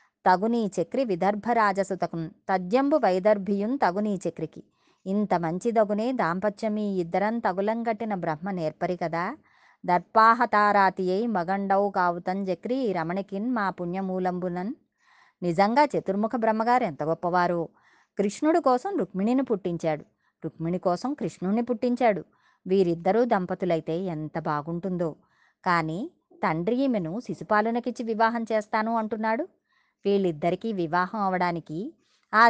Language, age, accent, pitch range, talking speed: Telugu, 20-39, native, 175-230 Hz, 95 wpm